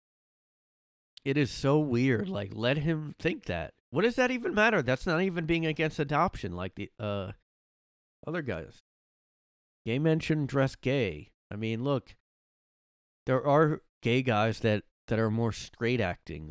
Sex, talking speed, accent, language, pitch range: male, 155 wpm, American, English, 95-120 Hz